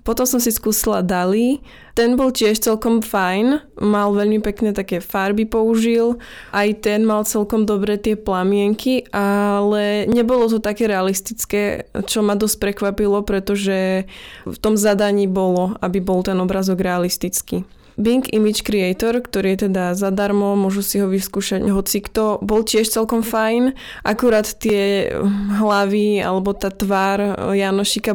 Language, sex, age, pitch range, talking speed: Slovak, female, 20-39, 195-220 Hz, 140 wpm